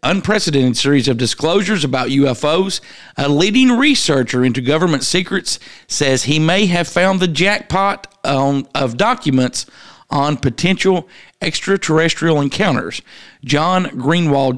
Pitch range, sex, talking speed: 135-175 Hz, male, 110 wpm